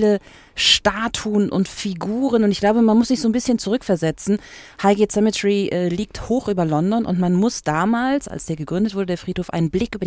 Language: German